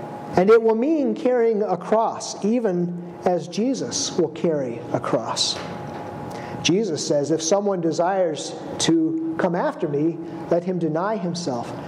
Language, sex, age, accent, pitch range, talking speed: English, male, 50-69, American, 165-215 Hz, 135 wpm